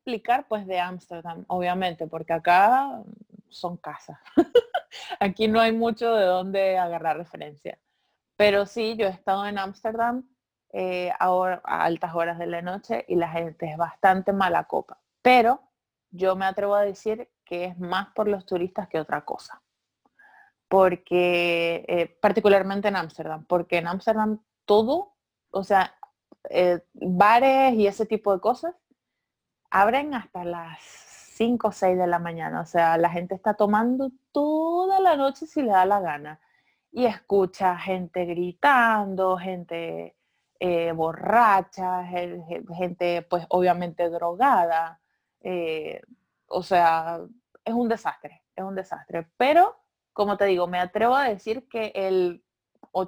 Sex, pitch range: female, 175-225 Hz